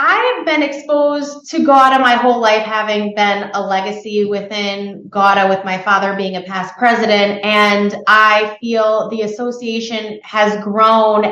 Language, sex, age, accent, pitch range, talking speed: English, female, 20-39, American, 190-220 Hz, 150 wpm